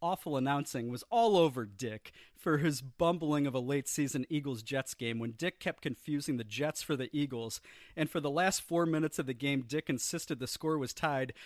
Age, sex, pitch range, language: 40-59, male, 130-165 Hz, English